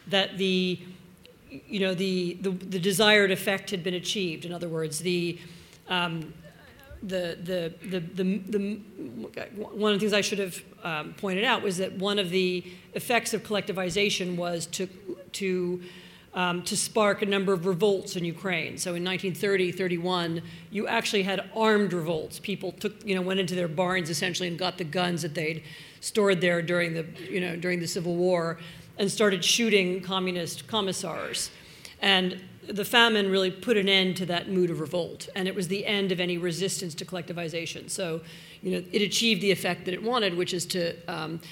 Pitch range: 175-195 Hz